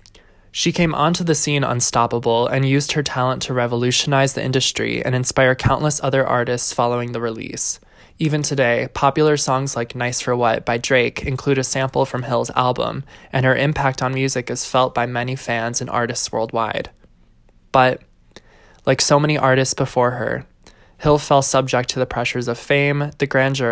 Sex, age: male, 20-39